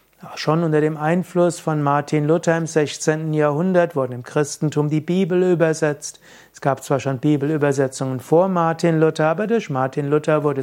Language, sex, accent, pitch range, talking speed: German, male, German, 150-170 Hz, 170 wpm